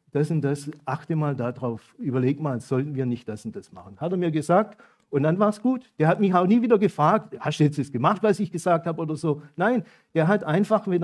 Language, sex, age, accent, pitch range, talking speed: German, male, 50-69, German, 140-185 Hz, 255 wpm